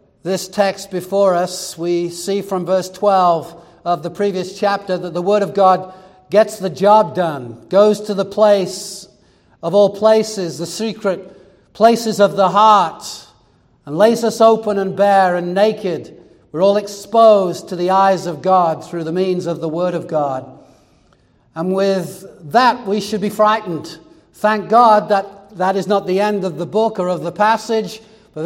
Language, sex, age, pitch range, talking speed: English, male, 60-79, 180-210 Hz, 175 wpm